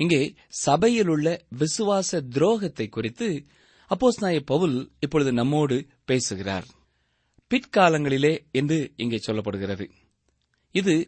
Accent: native